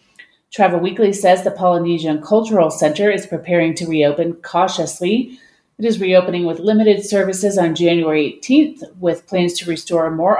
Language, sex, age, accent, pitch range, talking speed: English, female, 30-49, American, 170-210 Hz, 150 wpm